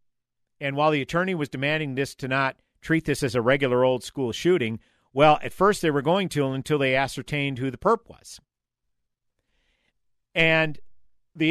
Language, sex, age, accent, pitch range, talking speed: English, male, 50-69, American, 125-155 Hz, 170 wpm